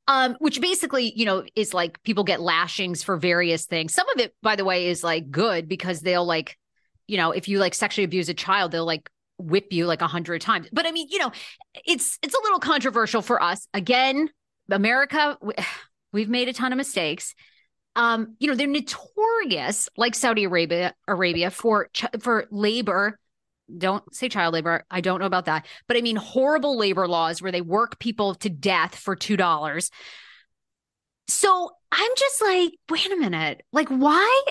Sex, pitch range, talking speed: female, 185-290 Hz, 190 wpm